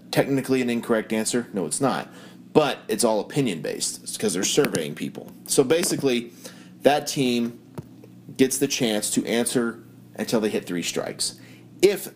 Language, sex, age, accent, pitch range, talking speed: English, male, 30-49, American, 85-125 Hz, 155 wpm